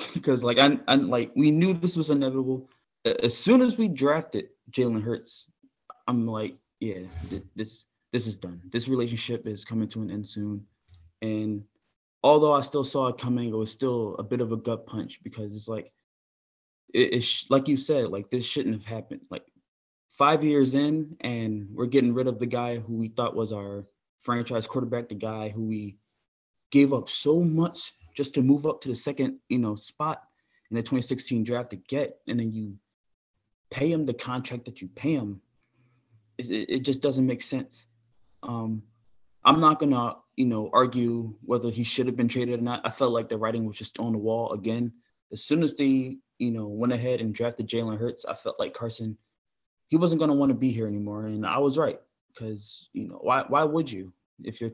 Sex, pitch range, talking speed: male, 110-135 Hz, 200 wpm